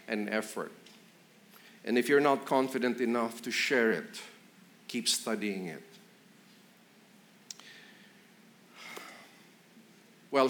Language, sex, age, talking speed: English, male, 50-69, 85 wpm